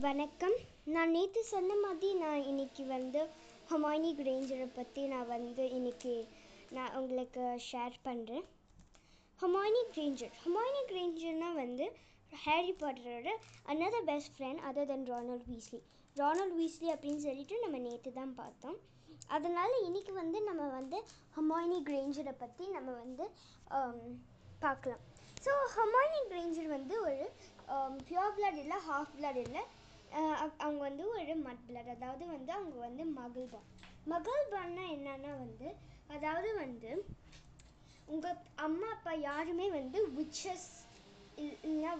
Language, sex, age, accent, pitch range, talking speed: Tamil, male, 20-39, native, 260-345 Hz, 120 wpm